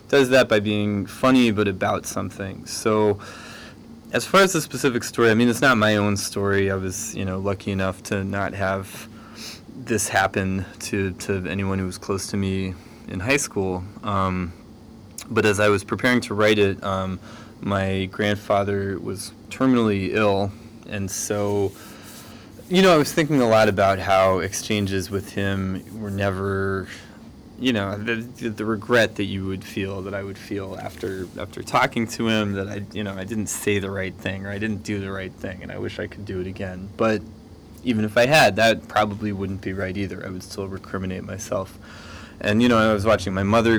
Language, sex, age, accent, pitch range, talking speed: English, male, 20-39, American, 95-110 Hz, 195 wpm